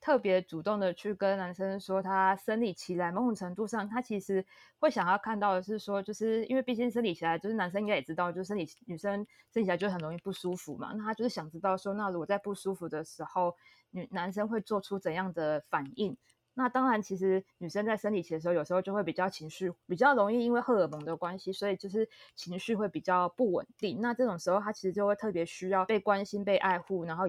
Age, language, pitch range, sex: 20-39, Chinese, 180-215 Hz, female